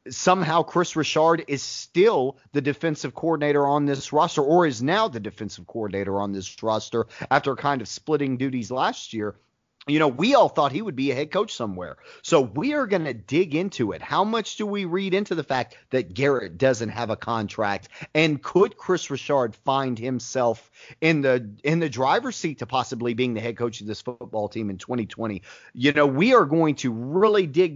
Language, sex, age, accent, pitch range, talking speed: English, male, 30-49, American, 125-185 Hz, 200 wpm